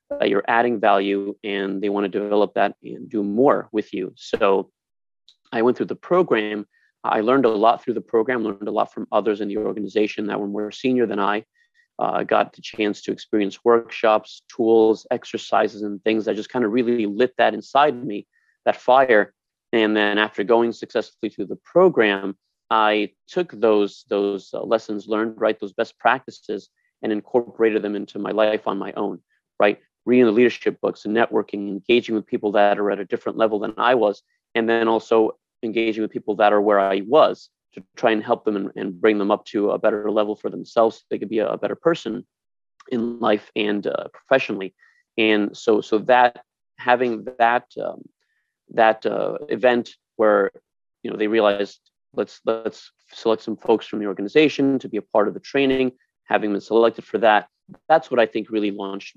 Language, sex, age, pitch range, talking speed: English, male, 30-49, 105-120 Hz, 195 wpm